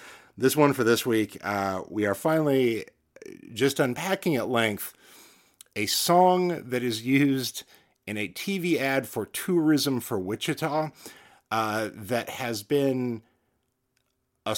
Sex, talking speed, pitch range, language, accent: male, 130 wpm, 105-135 Hz, English, American